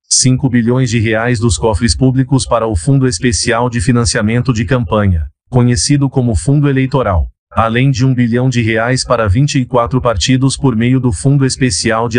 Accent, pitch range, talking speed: Brazilian, 110-125 Hz, 165 wpm